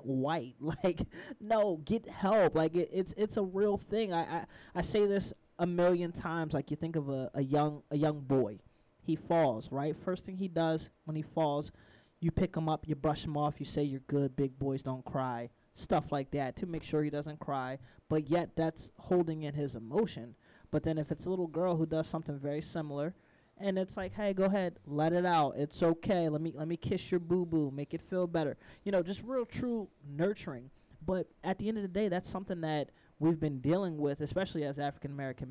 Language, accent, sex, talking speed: English, American, male, 215 wpm